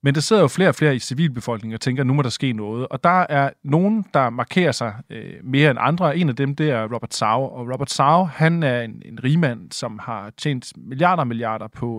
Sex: male